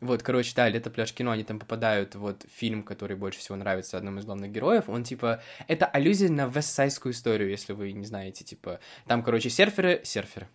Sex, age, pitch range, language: male, 20-39, 110-135 Hz, Russian